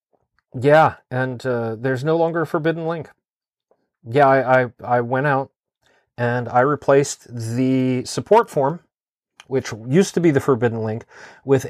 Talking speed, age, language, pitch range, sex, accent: 150 wpm, 40-59, English, 120-150 Hz, male, American